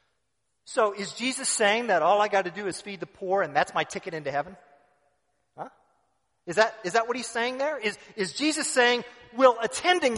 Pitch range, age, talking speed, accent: 175-250 Hz, 40-59, 200 wpm, American